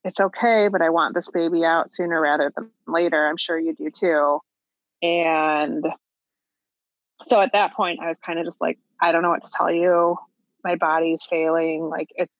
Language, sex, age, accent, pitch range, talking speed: English, female, 30-49, American, 165-190 Hz, 190 wpm